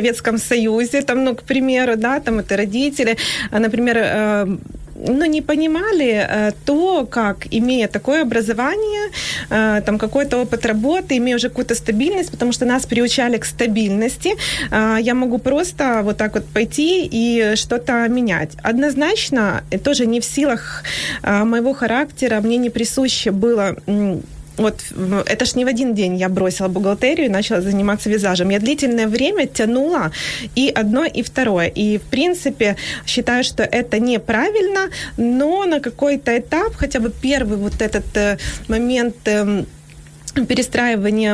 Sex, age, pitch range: female, 20-39, 205-255 Hz